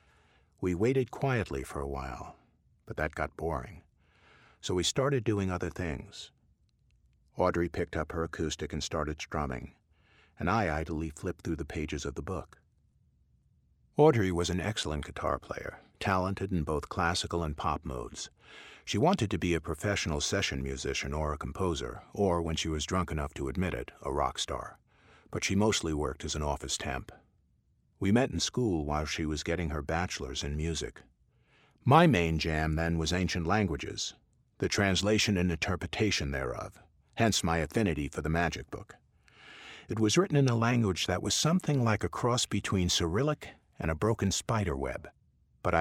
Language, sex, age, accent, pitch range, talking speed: English, male, 50-69, American, 75-100 Hz, 170 wpm